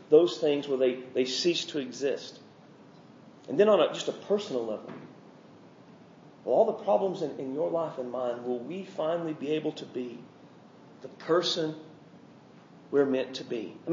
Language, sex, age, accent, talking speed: English, male, 40-59, American, 165 wpm